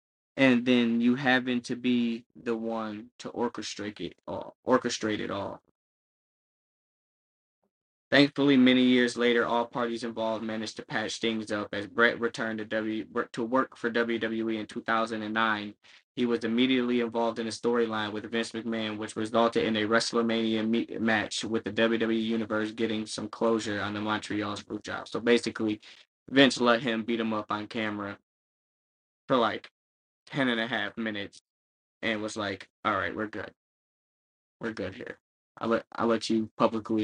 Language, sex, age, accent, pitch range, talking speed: English, male, 10-29, American, 110-120 Hz, 160 wpm